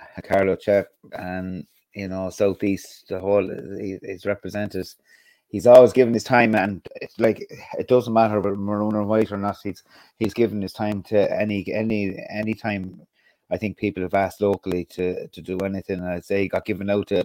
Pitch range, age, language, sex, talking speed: 95-115 Hz, 30-49, English, male, 200 wpm